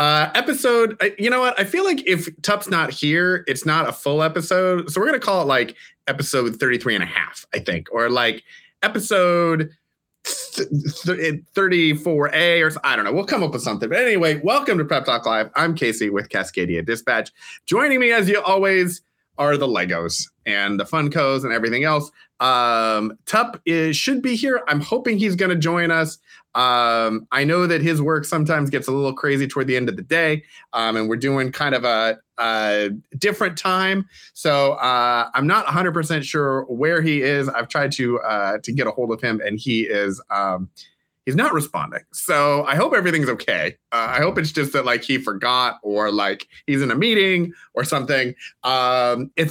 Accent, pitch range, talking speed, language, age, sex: American, 125-180 Hz, 200 wpm, English, 30-49, male